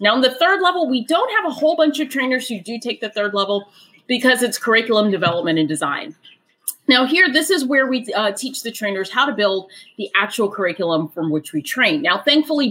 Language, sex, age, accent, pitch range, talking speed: English, female, 30-49, American, 180-250 Hz, 220 wpm